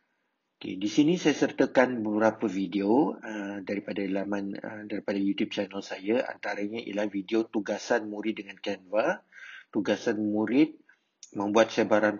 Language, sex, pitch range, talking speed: Malay, male, 105-120 Hz, 130 wpm